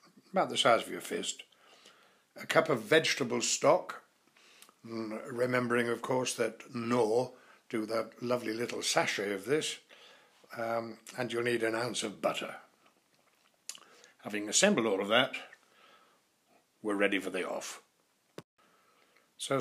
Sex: male